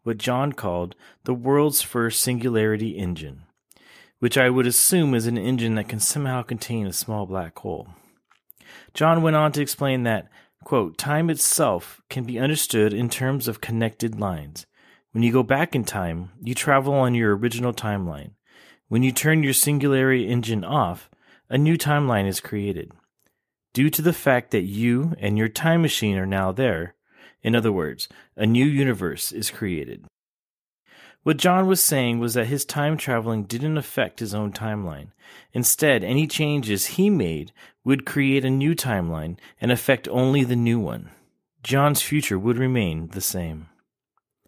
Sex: male